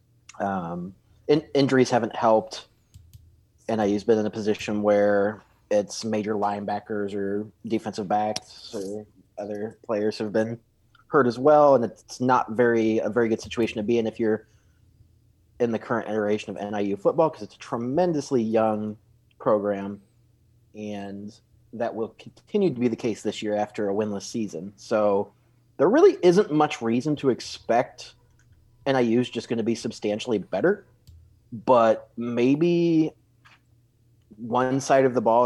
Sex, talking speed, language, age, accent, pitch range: male, 150 wpm, English, 30-49, American, 105-120 Hz